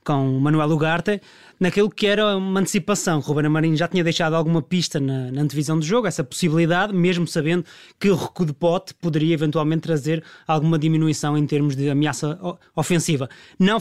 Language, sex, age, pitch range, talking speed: Portuguese, male, 20-39, 155-185 Hz, 180 wpm